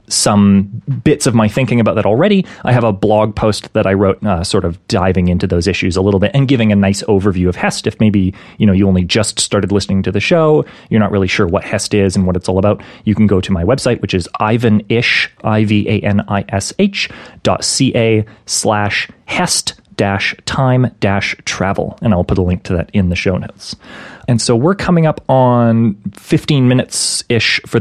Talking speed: 205 wpm